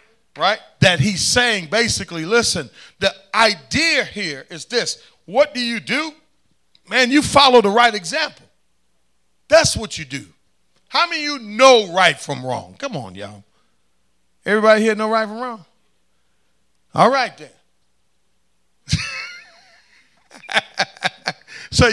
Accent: American